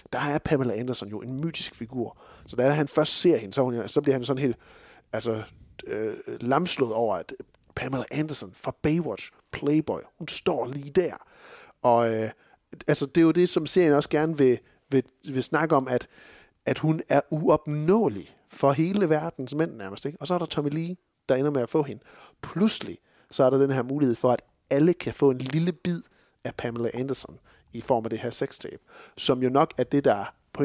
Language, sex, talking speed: Danish, male, 205 wpm